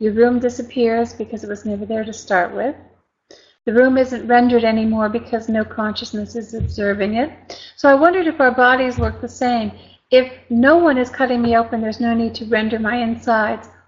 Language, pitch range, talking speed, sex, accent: English, 225-260 Hz, 195 wpm, female, American